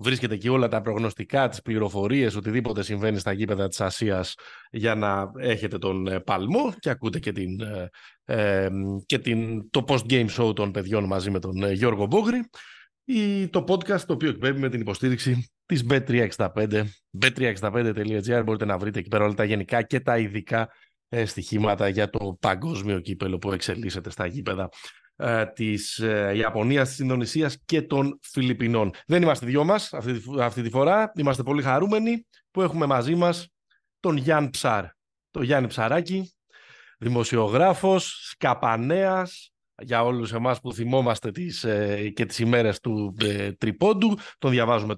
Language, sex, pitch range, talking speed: Greek, male, 105-140 Hz, 150 wpm